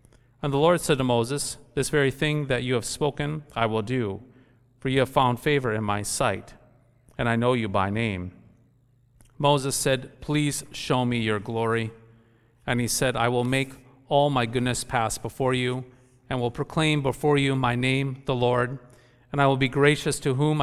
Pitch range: 115-135 Hz